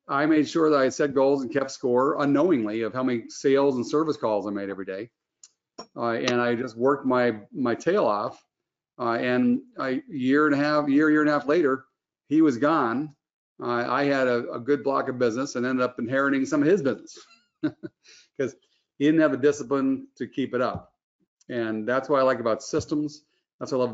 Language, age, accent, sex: English, 50-69, American, male